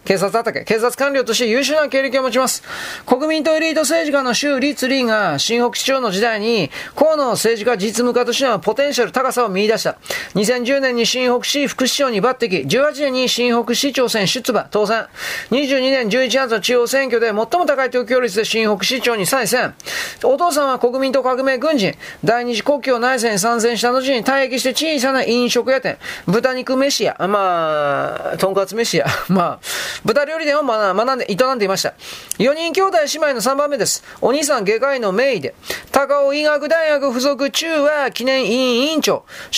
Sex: male